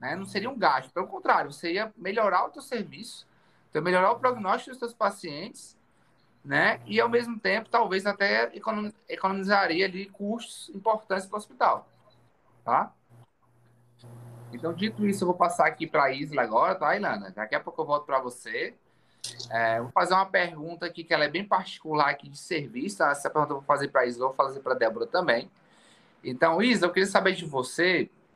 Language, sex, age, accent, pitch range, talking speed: Portuguese, male, 20-39, Brazilian, 155-205 Hz, 190 wpm